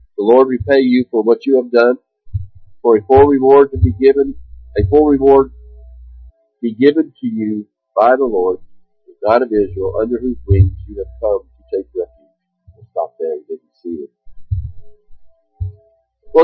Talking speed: 165 wpm